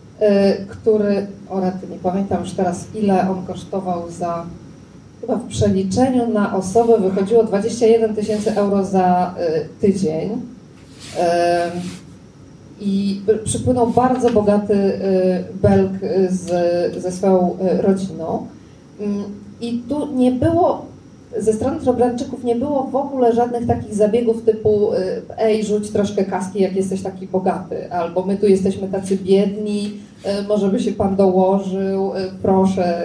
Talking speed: 120 wpm